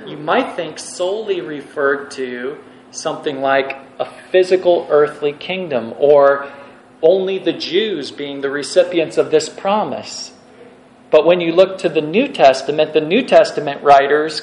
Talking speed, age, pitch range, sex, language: 140 wpm, 40-59, 145-200 Hz, male, English